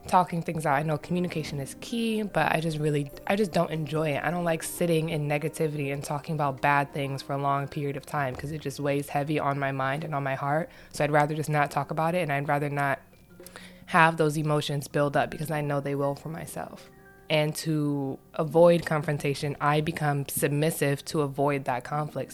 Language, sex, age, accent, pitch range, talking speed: English, female, 20-39, American, 145-170 Hz, 220 wpm